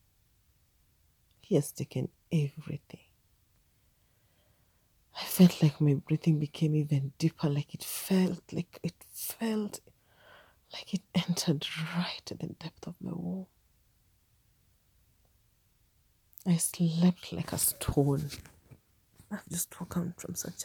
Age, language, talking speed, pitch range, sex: 30-49, English, 110 wpm, 105-170 Hz, female